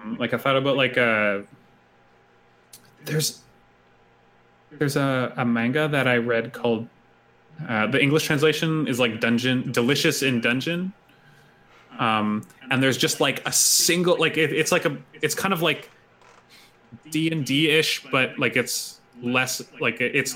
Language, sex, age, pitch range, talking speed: English, male, 20-39, 115-140 Hz, 140 wpm